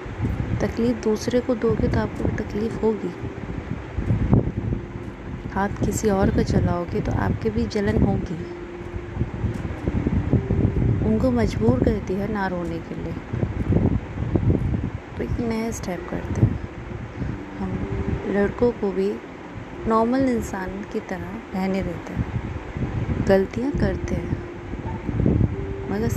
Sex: female